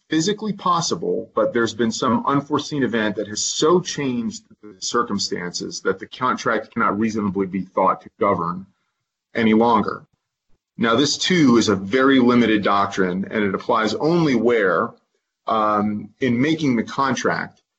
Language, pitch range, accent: English, 100-125 Hz, American